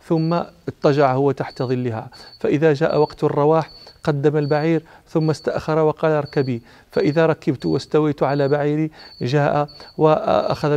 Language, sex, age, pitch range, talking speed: Arabic, male, 40-59, 135-155 Hz, 125 wpm